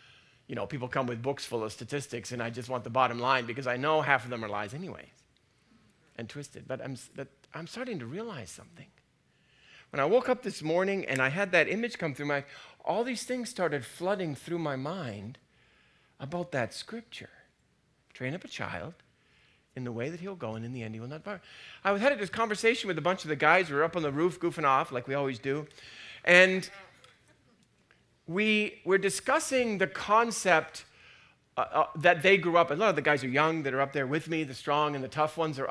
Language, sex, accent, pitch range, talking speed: English, male, American, 140-195 Hz, 225 wpm